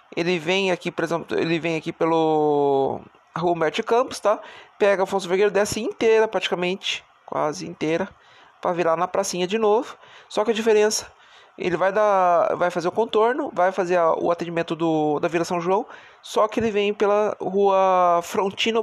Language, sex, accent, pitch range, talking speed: Portuguese, male, Brazilian, 165-200 Hz, 180 wpm